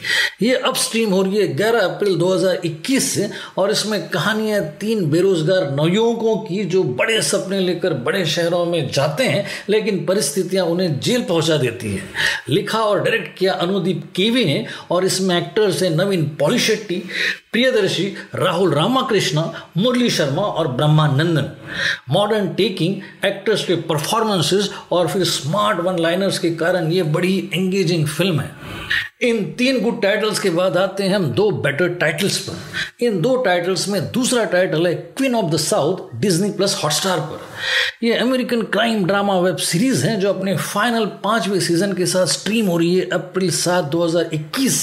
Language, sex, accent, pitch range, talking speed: Hindi, male, native, 170-210 Hz, 125 wpm